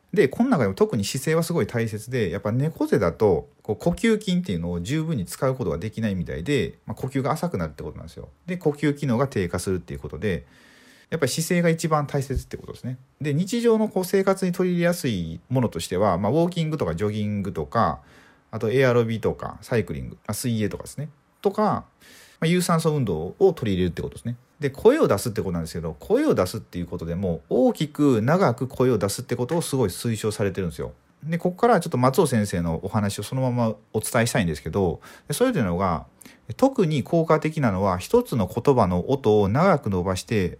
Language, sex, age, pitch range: Japanese, male, 40-59, 100-165 Hz